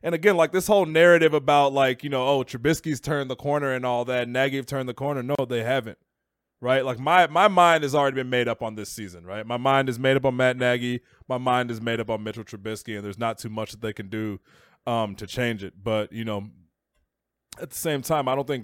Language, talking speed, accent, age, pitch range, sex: English, 255 wpm, American, 20-39, 105-130 Hz, male